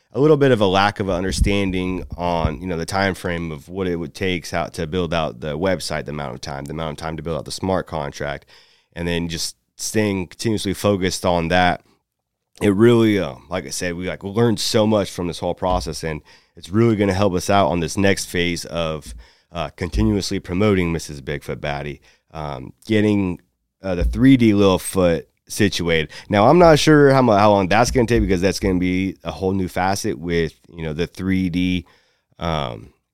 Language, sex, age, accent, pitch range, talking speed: English, male, 30-49, American, 80-100 Hz, 205 wpm